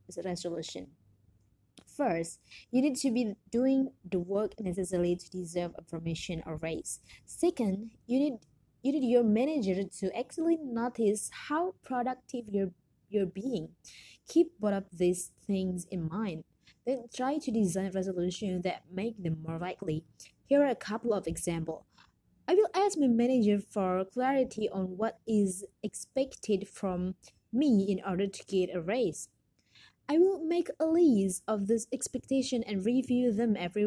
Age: 20-39